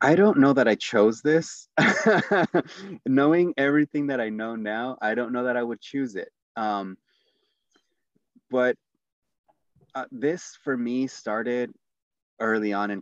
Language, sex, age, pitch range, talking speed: English, male, 30-49, 95-125 Hz, 145 wpm